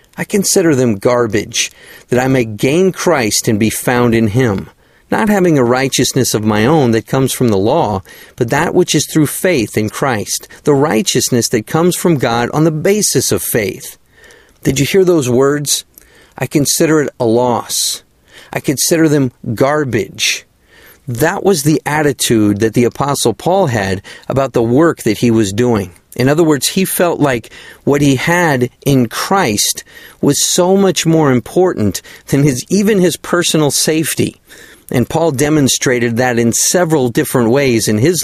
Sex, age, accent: male, 50-69, American